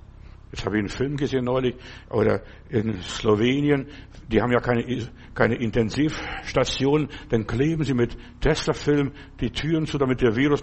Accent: German